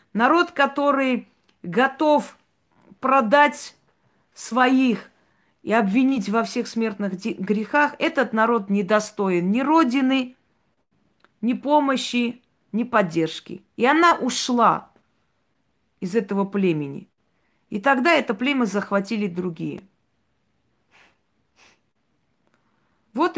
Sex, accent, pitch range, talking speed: female, native, 200-265 Hz, 85 wpm